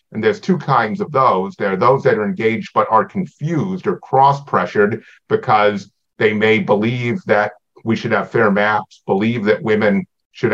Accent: American